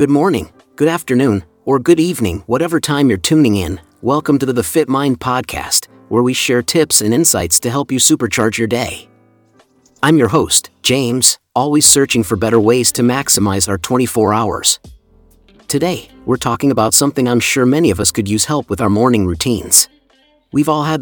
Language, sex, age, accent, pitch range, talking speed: English, male, 50-69, American, 110-145 Hz, 185 wpm